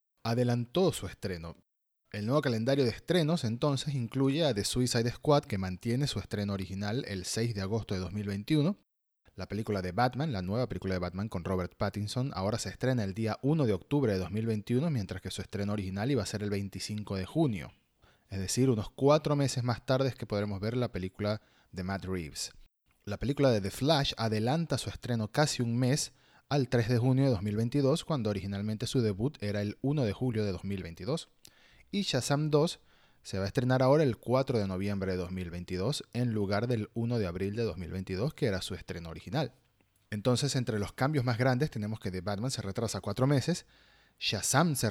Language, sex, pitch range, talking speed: Spanish, male, 100-130 Hz, 195 wpm